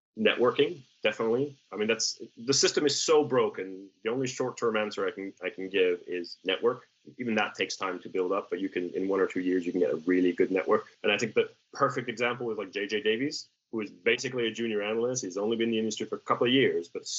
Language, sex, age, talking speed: English, male, 30-49, 250 wpm